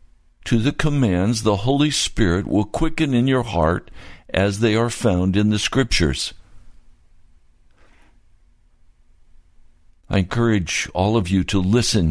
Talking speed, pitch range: 125 wpm, 90-120 Hz